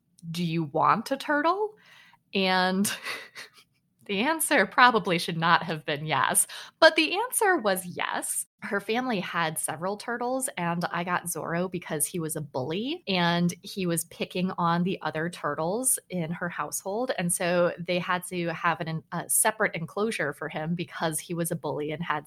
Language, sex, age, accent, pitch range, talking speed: English, female, 20-39, American, 165-205 Hz, 165 wpm